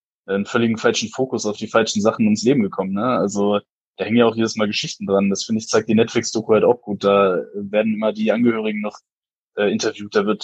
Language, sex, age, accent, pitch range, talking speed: German, male, 10-29, German, 105-125 Hz, 230 wpm